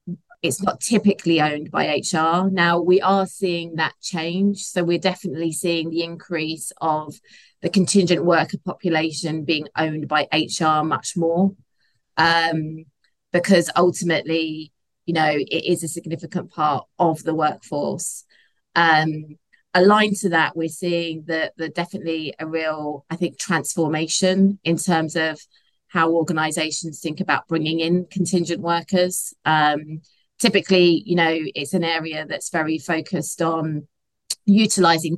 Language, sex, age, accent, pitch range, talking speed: English, female, 20-39, British, 155-175 Hz, 135 wpm